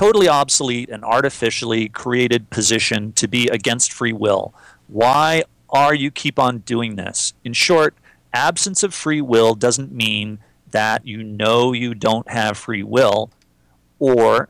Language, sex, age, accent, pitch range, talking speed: English, male, 40-59, American, 110-130 Hz, 145 wpm